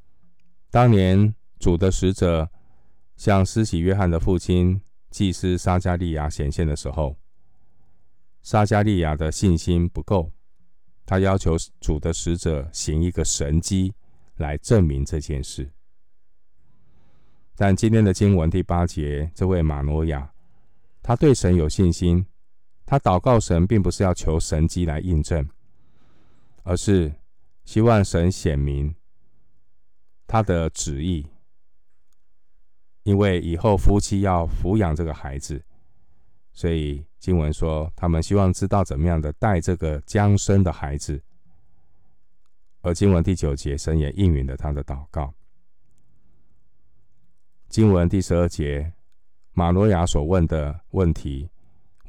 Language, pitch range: Chinese, 80-95 Hz